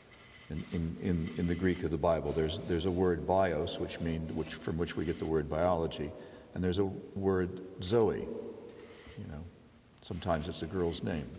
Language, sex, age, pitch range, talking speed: English, male, 60-79, 85-105 Hz, 190 wpm